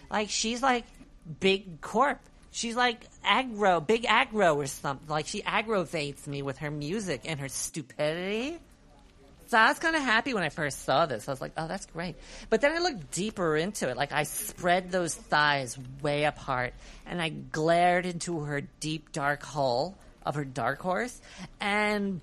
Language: English